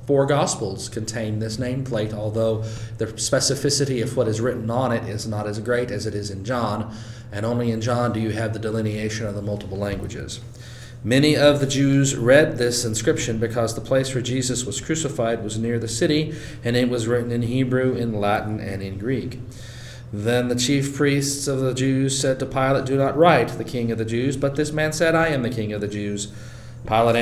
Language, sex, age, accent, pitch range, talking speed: English, male, 40-59, American, 115-140 Hz, 210 wpm